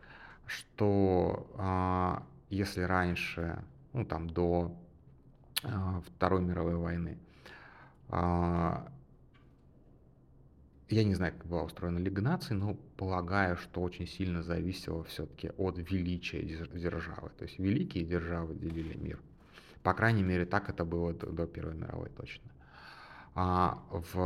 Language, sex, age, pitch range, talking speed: Russian, male, 30-49, 85-105 Hz, 110 wpm